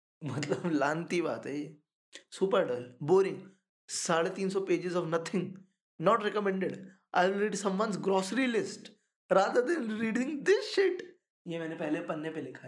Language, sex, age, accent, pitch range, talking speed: Hindi, male, 20-39, native, 150-195 Hz, 120 wpm